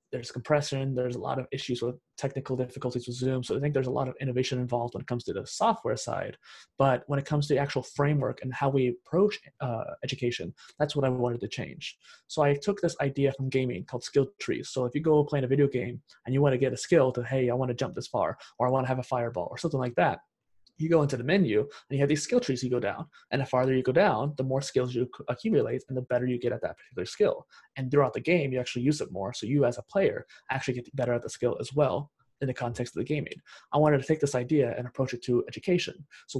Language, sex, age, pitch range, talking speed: English, male, 20-39, 125-145 Hz, 275 wpm